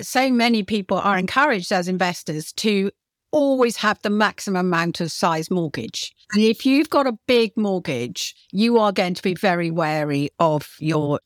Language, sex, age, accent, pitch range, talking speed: English, female, 50-69, British, 170-235 Hz, 170 wpm